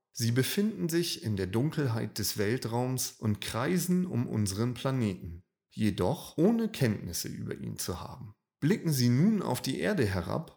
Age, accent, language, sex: 30-49, German, German, male